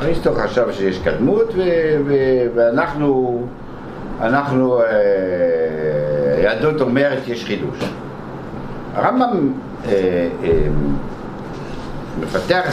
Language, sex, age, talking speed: Hebrew, male, 60-79, 65 wpm